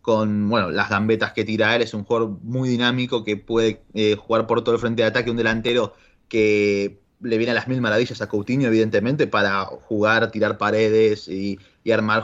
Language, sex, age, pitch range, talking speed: Spanish, male, 20-39, 110-125 Hz, 200 wpm